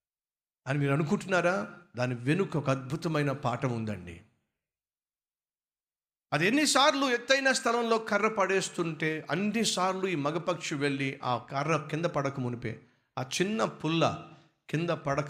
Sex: male